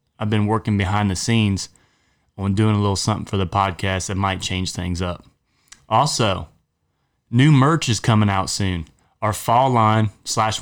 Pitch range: 100-120 Hz